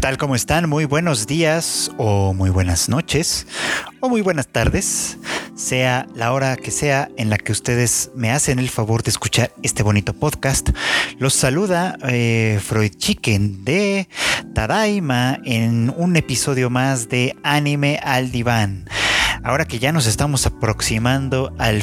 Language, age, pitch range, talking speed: Spanish, 30-49, 110-140 Hz, 150 wpm